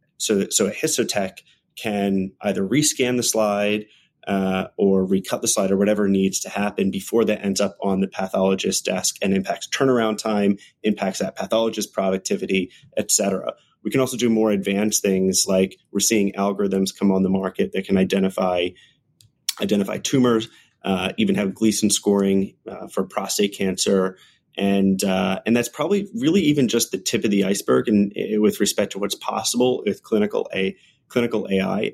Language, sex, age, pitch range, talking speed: English, male, 30-49, 95-120 Hz, 165 wpm